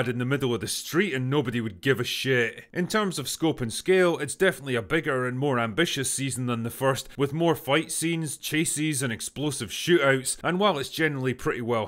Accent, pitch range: British, 125-155 Hz